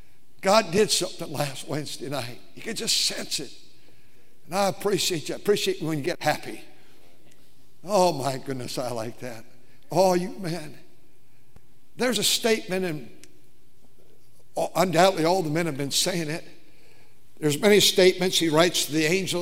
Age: 60-79